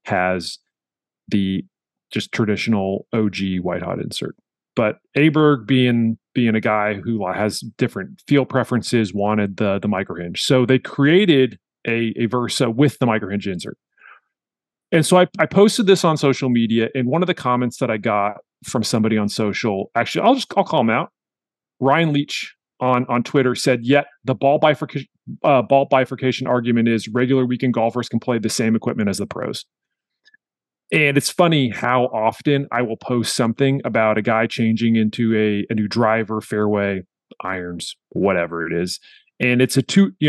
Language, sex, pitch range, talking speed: English, male, 110-140 Hz, 175 wpm